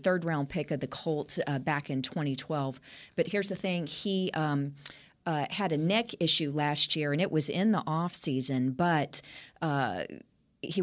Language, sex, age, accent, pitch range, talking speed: English, female, 40-59, American, 135-160 Hz, 175 wpm